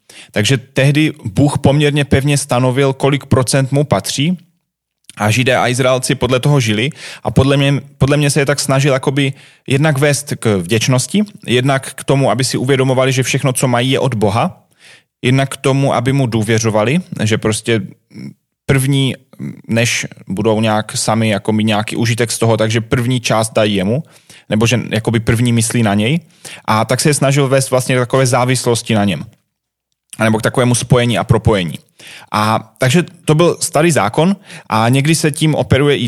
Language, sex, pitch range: Slovak, male, 110-140 Hz